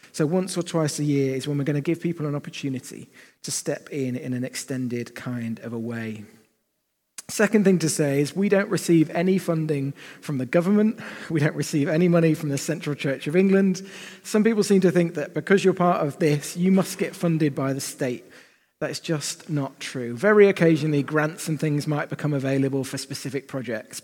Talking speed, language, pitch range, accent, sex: 205 wpm, English, 130-165 Hz, British, male